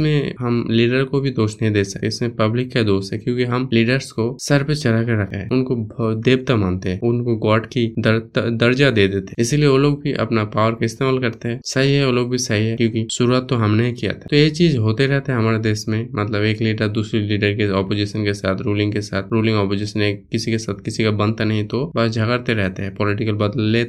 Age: 20-39